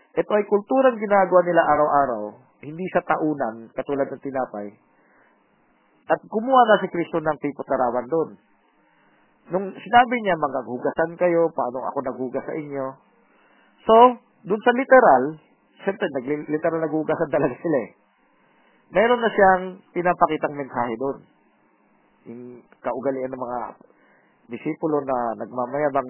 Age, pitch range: 40-59, 130-185 Hz